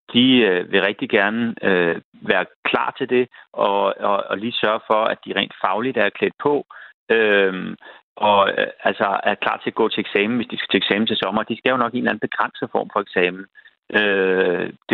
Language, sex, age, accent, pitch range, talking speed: Danish, male, 30-49, native, 105-140 Hz, 190 wpm